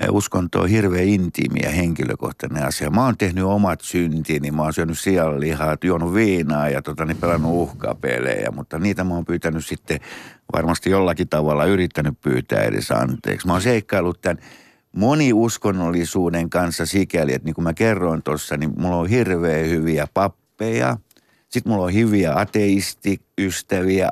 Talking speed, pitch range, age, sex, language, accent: 145 wpm, 80-105 Hz, 60-79, male, Finnish, native